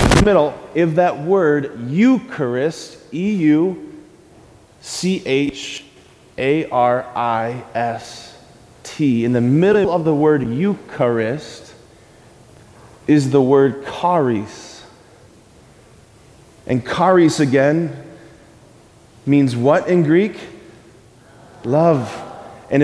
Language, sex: English, male